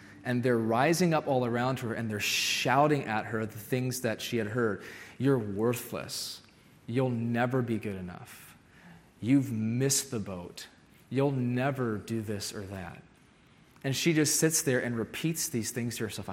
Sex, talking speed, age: male, 170 wpm, 30-49